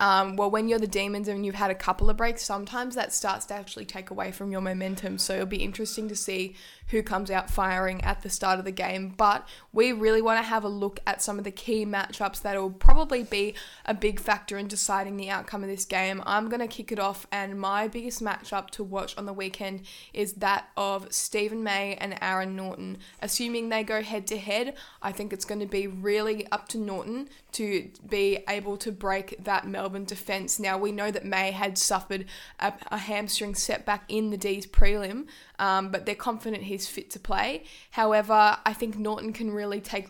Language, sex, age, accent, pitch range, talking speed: English, female, 10-29, Australian, 195-215 Hz, 210 wpm